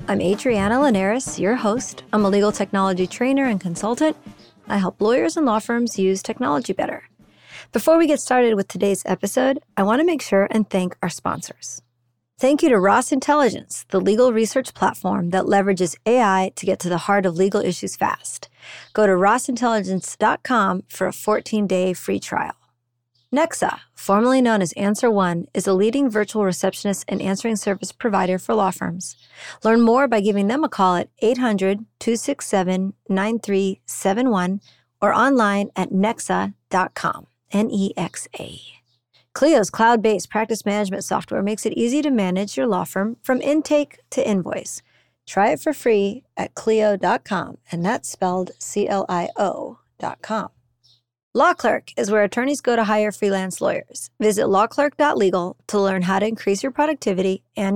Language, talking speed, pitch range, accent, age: English, 150 wpm, 190-235 Hz, American, 40-59